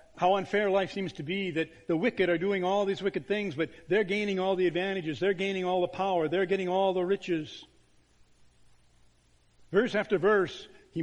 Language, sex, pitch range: English, male, 145-190 Hz